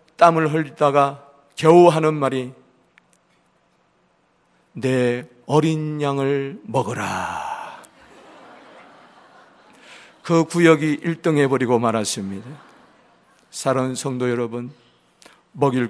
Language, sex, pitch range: Korean, male, 135-175 Hz